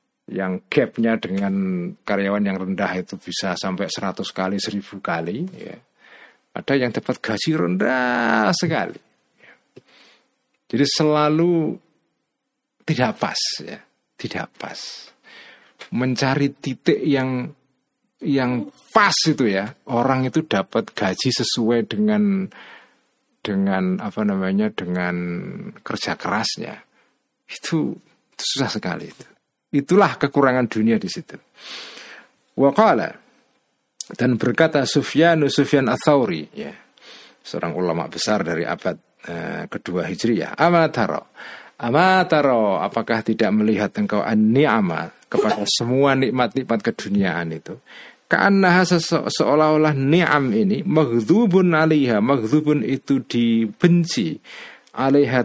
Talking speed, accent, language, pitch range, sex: 100 wpm, native, Indonesian, 110-170 Hz, male